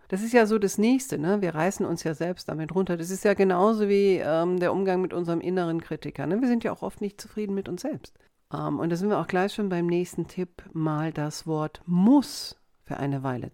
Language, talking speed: German, 245 wpm